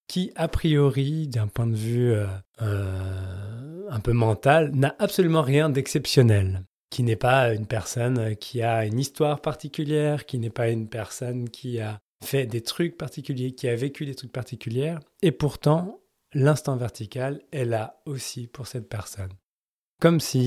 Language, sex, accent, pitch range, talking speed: French, male, French, 115-150 Hz, 160 wpm